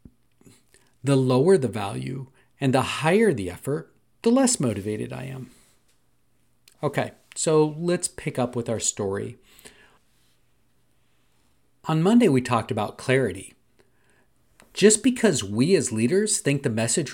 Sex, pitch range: male, 120-160 Hz